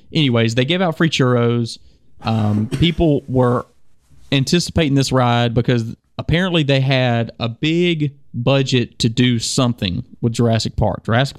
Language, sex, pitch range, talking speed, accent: English, male, 120-175 Hz, 135 wpm, American